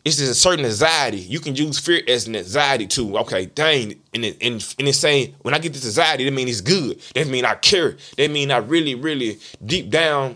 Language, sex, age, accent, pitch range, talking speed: English, male, 20-39, American, 140-180 Hz, 230 wpm